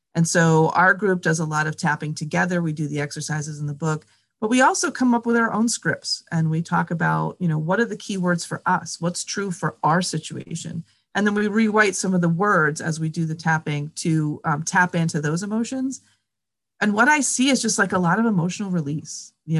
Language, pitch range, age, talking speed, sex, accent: English, 160-220 Hz, 30-49, 230 wpm, female, American